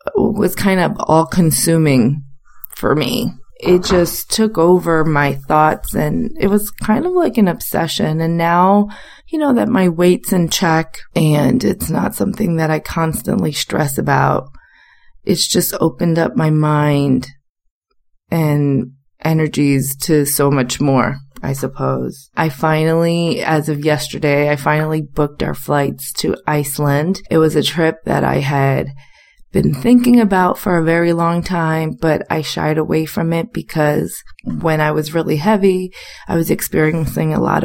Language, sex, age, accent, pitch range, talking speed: English, female, 30-49, American, 140-170 Hz, 155 wpm